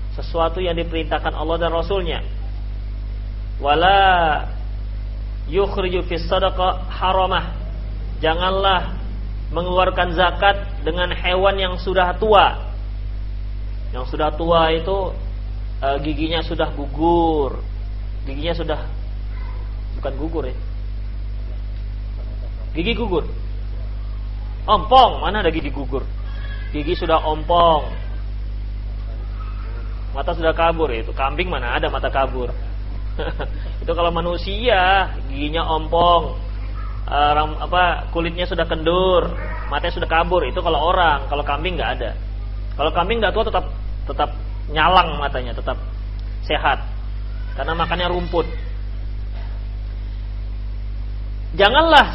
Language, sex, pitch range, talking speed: Malay, male, 100-170 Hz, 95 wpm